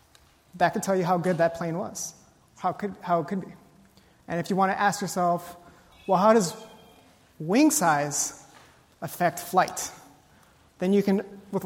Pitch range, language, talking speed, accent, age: 165-195 Hz, English, 165 wpm, American, 30-49